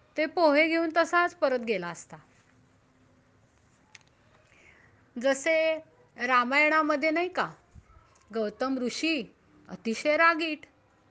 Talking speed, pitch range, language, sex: 80 wpm, 220-305 Hz, Marathi, female